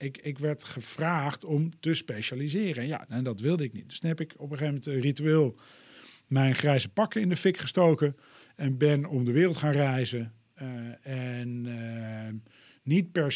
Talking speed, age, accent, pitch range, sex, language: 185 wpm, 50-69, Dutch, 125-160 Hz, male, Dutch